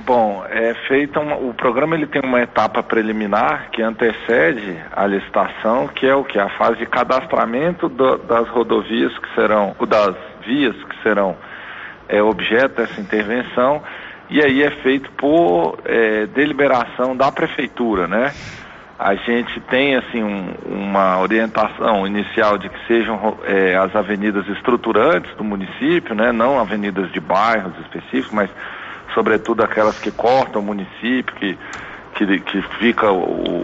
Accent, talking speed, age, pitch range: Brazilian, 145 wpm, 40-59, 105-135 Hz